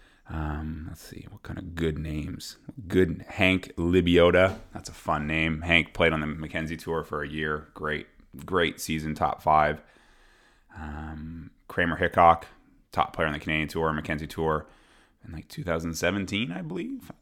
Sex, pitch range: male, 75-90 Hz